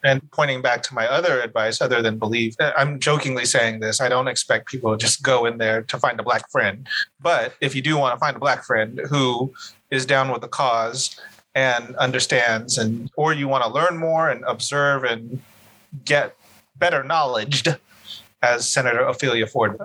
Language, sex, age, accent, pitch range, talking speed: English, male, 30-49, American, 115-140 Hz, 190 wpm